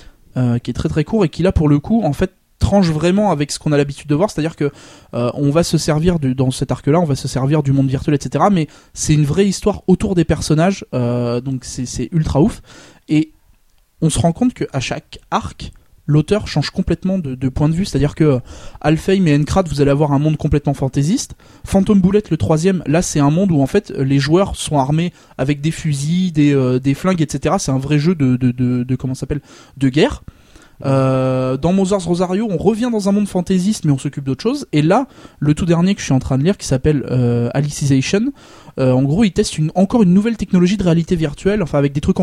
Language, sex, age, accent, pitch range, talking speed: French, male, 20-39, French, 140-185 Hz, 245 wpm